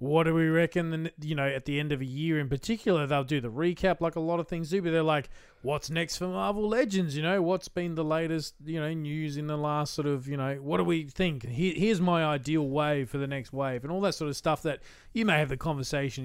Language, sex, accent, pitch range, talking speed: English, male, Australian, 140-170 Hz, 265 wpm